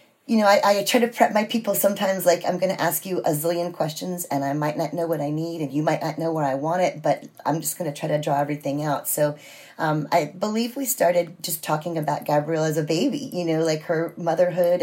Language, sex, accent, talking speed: English, female, American, 260 wpm